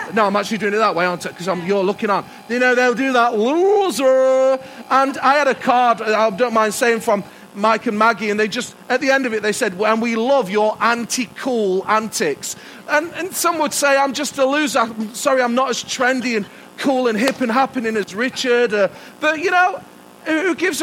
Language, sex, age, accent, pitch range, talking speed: English, male, 40-59, British, 175-270 Hz, 215 wpm